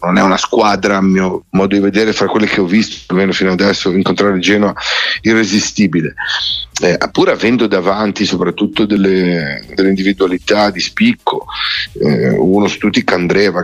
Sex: male